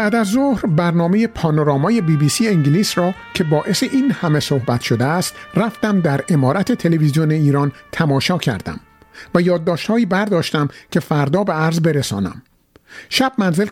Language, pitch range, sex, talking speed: Persian, 140-205 Hz, male, 150 wpm